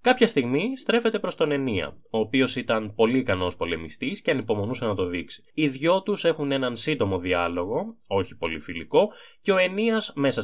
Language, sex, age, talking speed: Greek, male, 20-39, 180 wpm